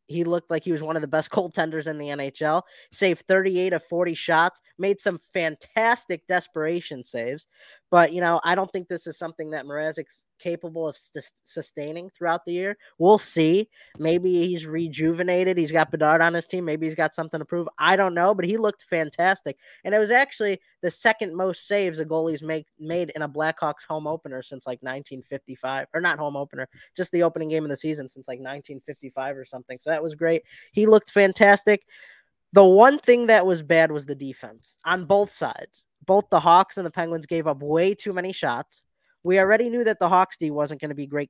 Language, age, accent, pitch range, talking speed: English, 20-39, American, 150-185 Hz, 210 wpm